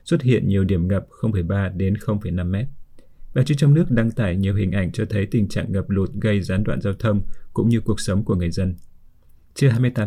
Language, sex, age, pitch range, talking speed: Vietnamese, male, 20-39, 100-120 Hz, 215 wpm